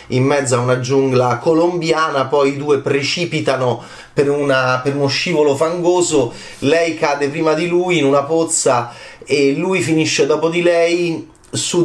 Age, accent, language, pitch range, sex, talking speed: 30-49, native, Italian, 125-160 Hz, male, 150 wpm